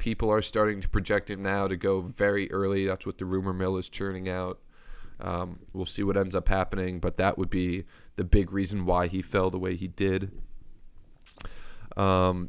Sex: male